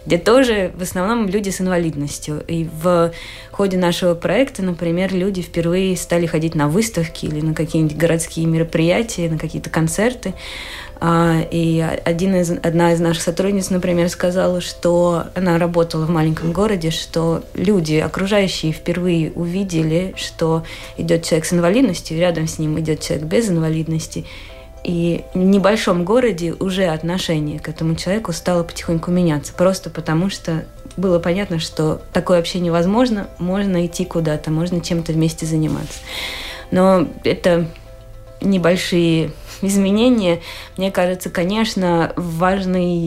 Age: 20-39